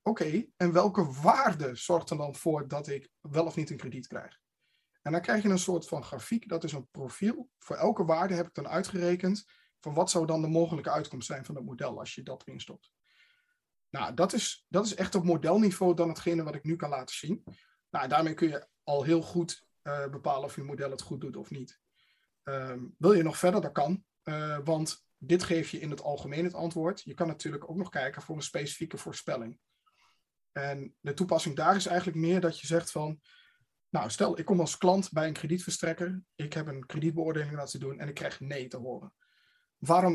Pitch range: 145-180 Hz